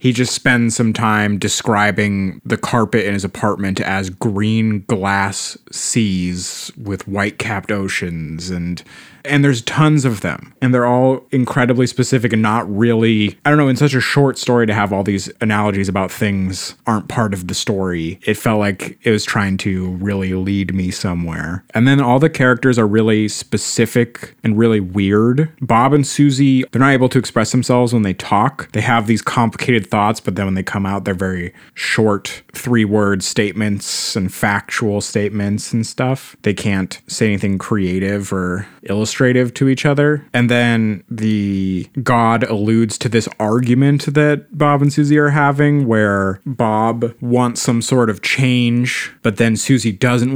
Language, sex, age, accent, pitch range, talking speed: English, male, 30-49, American, 100-125 Hz, 170 wpm